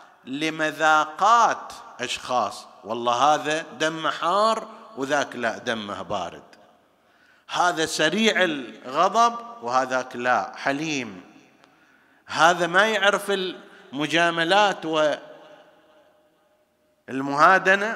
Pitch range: 130-195 Hz